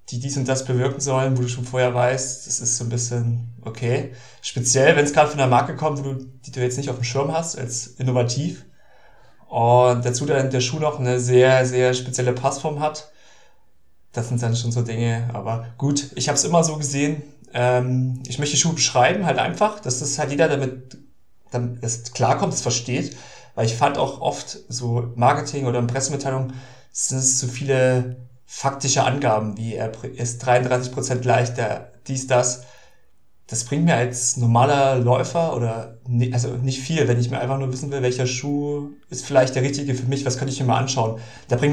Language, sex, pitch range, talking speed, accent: German, male, 125-140 Hz, 195 wpm, German